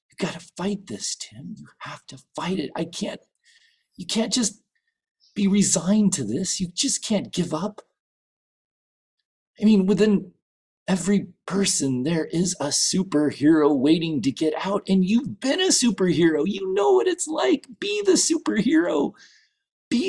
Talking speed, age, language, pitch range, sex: 150 wpm, 40-59, English, 165-265 Hz, male